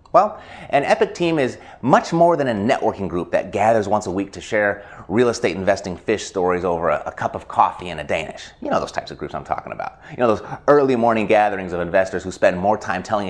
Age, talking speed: 30-49, 245 wpm